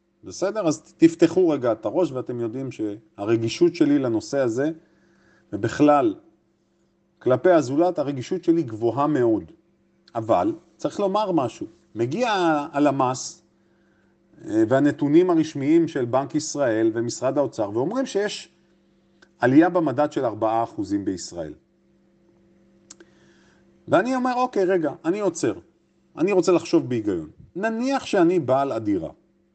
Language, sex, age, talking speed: Hebrew, male, 40-59, 110 wpm